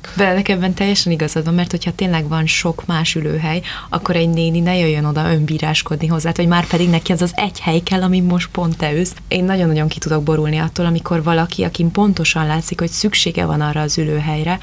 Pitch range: 160-185 Hz